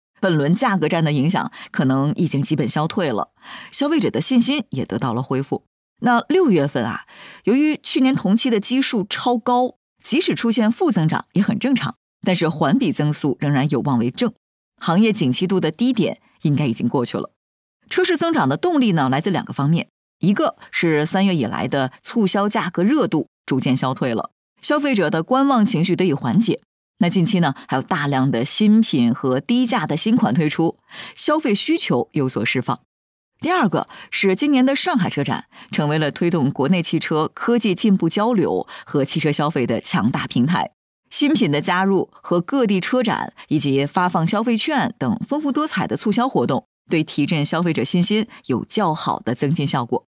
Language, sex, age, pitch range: Chinese, female, 30-49, 150-240 Hz